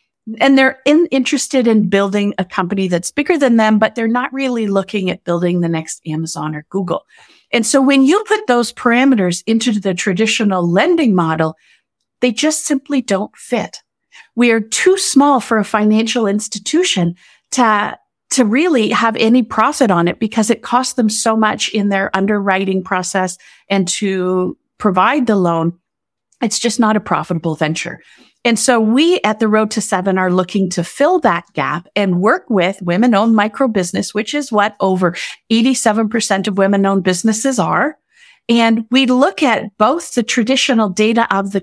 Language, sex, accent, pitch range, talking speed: English, female, American, 185-245 Hz, 165 wpm